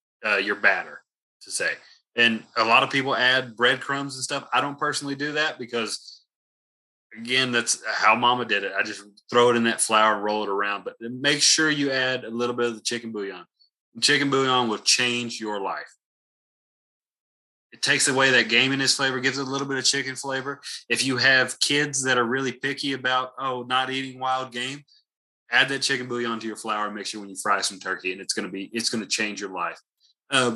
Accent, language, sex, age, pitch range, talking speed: American, English, male, 30-49, 115-135 Hz, 210 wpm